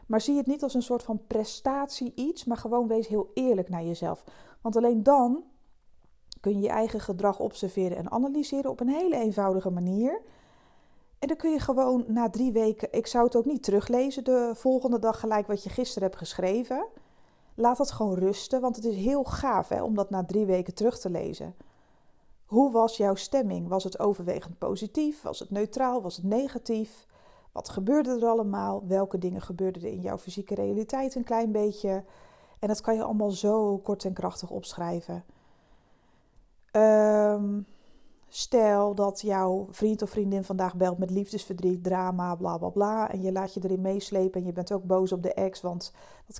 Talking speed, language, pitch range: 185 wpm, Dutch, 195-240 Hz